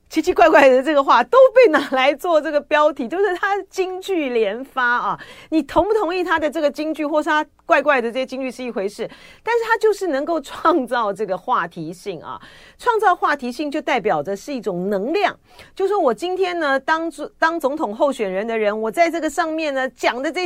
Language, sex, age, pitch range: Chinese, female, 40-59, 225-340 Hz